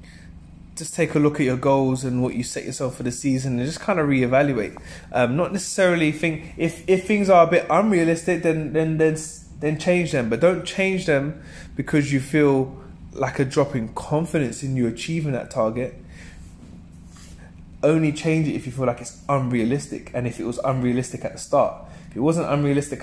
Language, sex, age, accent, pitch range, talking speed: English, male, 20-39, British, 110-140 Hz, 195 wpm